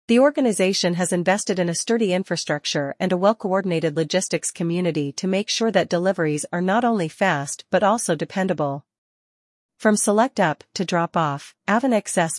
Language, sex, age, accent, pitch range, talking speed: English, female, 40-59, American, 160-200 Hz, 155 wpm